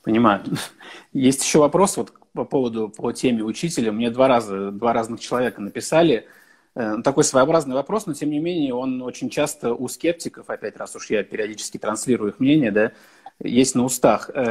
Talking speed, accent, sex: 170 wpm, native, male